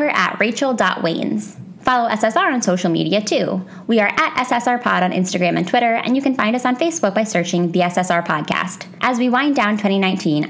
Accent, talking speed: American, 190 wpm